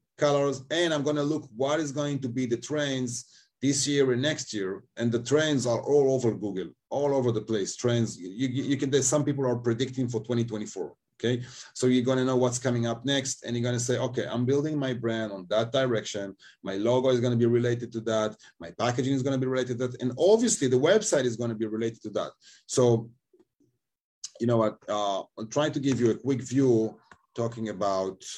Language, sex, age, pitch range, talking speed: English, male, 30-49, 115-145 Hz, 225 wpm